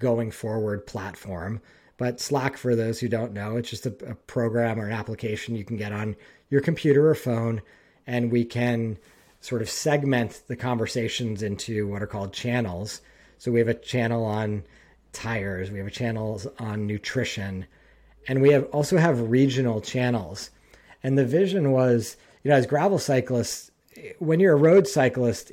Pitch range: 110-135 Hz